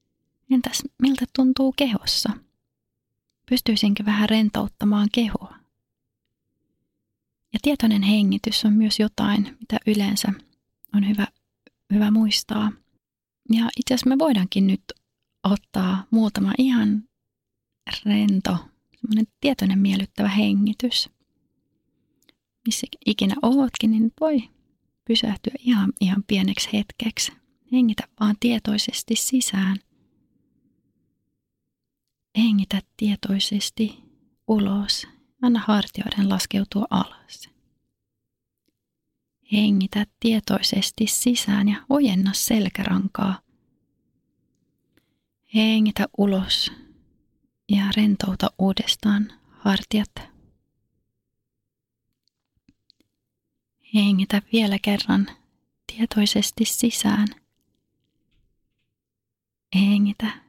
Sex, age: female, 30-49